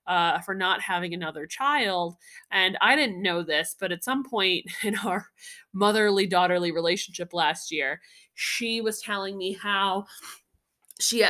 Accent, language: American, English